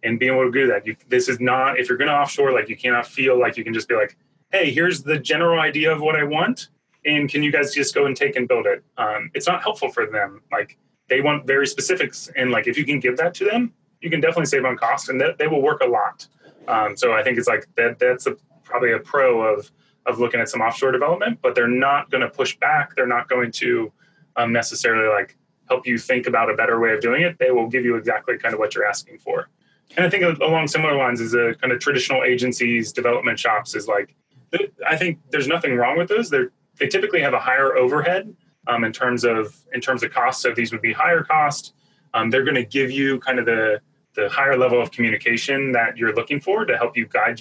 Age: 30-49